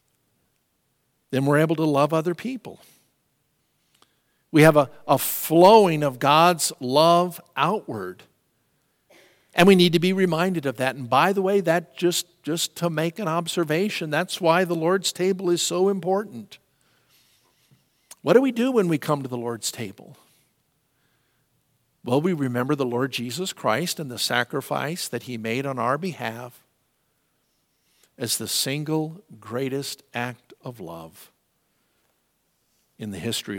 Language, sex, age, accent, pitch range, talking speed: English, male, 50-69, American, 125-170 Hz, 145 wpm